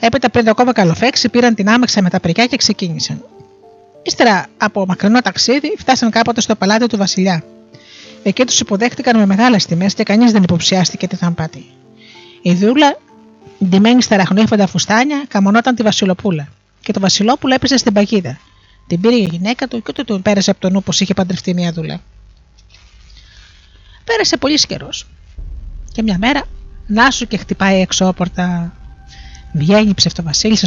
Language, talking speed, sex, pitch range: Greek, 160 wpm, female, 170-235 Hz